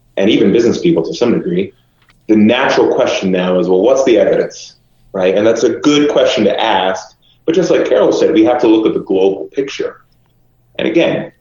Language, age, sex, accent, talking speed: English, 30-49, male, American, 205 wpm